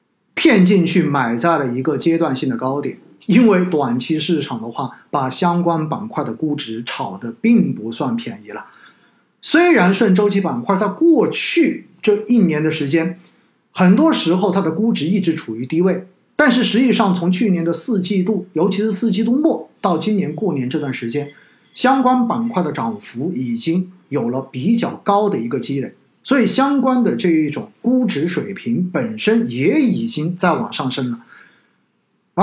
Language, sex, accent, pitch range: Chinese, male, native, 150-225 Hz